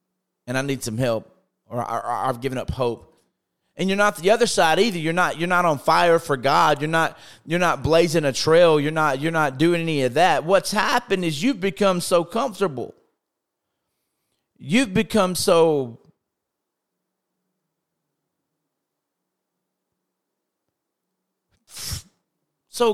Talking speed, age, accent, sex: 135 wpm, 40-59, American, male